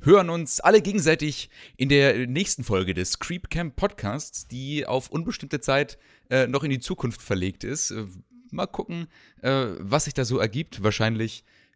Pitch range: 110-140 Hz